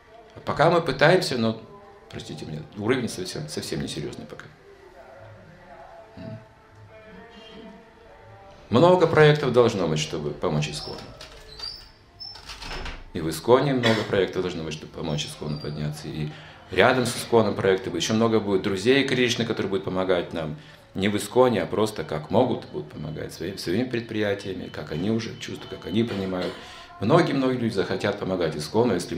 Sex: male